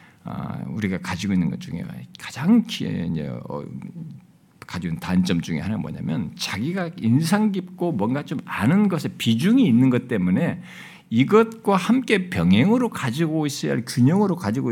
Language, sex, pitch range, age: Korean, male, 170-230 Hz, 50-69